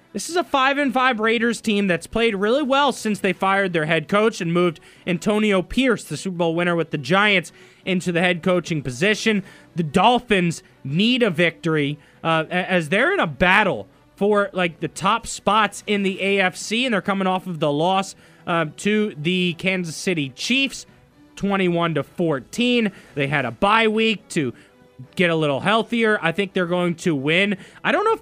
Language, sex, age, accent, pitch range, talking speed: English, male, 20-39, American, 165-220 Hz, 185 wpm